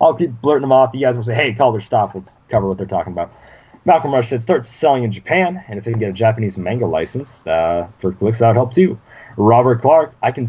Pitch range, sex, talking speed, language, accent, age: 100-130 Hz, male, 265 wpm, English, American, 30-49